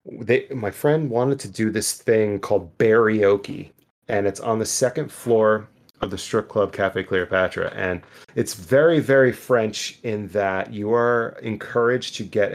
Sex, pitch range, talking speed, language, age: male, 95-120 Hz, 165 wpm, English, 30-49